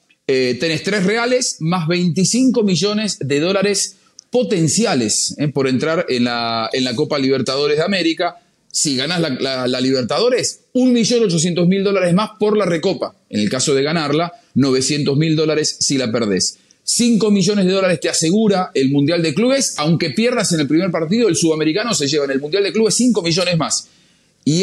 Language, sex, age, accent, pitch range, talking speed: English, male, 40-59, Argentinian, 140-205 Hz, 175 wpm